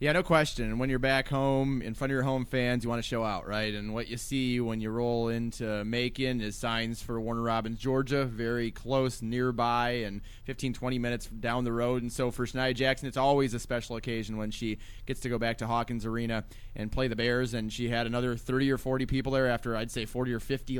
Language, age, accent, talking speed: English, 20-39, American, 235 wpm